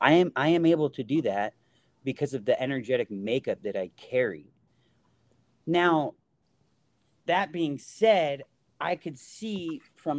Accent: American